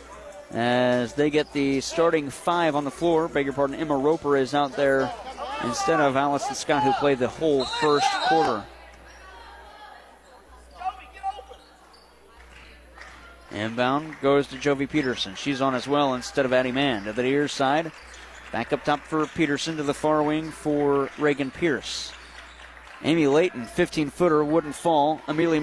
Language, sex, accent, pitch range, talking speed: English, male, American, 140-170 Hz, 145 wpm